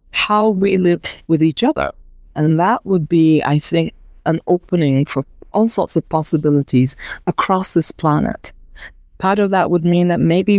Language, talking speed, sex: English, 165 wpm, female